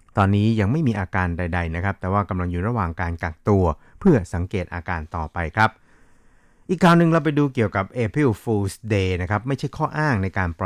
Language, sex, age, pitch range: Thai, male, 60-79, 90-115 Hz